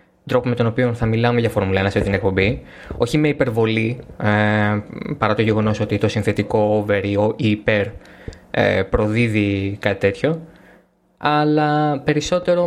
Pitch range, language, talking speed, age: 105-125 Hz, Greek, 135 wpm, 20-39